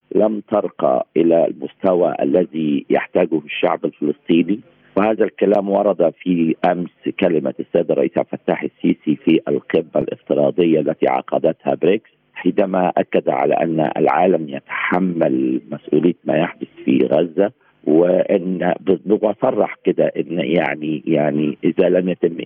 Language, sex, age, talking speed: Arabic, male, 50-69, 120 wpm